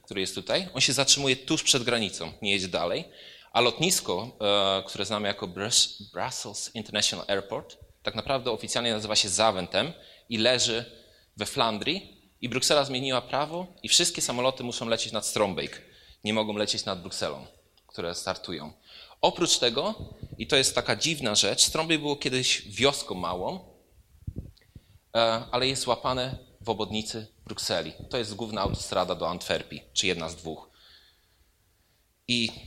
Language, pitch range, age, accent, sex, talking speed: Polish, 100-125 Hz, 20-39, native, male, 145 wpm